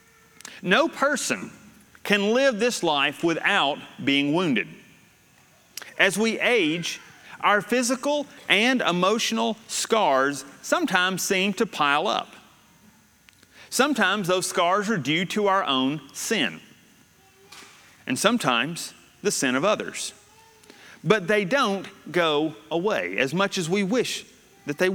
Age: 40-59